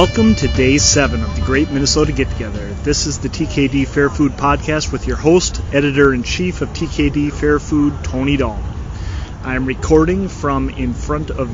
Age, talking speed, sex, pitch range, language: 30-49, 165 wpm, male, 100-150 Hz, English